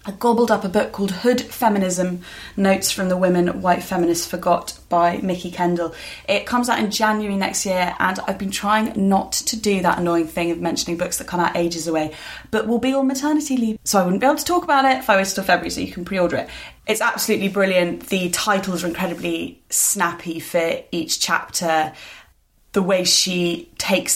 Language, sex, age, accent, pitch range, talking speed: English, female, 20-39, British, 175-215 Hz, 205 wpm